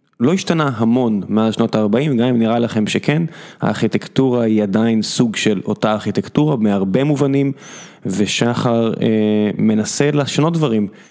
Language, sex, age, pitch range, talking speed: Hebrew, male, 20-39, 105-125 Hz, 135 wpm